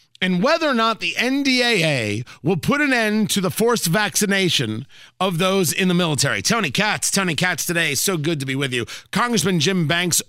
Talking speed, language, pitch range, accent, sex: 190 wpm, English, 135-180 Hz, American, male